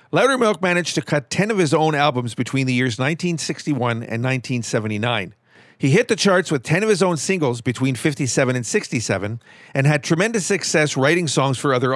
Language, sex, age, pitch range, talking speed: English, male, 50-69, 130-170 Hz, 185 wpm